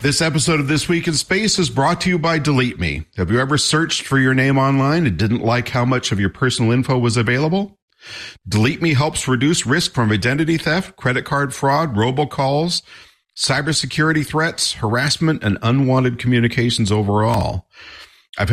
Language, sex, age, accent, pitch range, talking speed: English, male, 50-69, American, 100-140 Hz, 170 wpm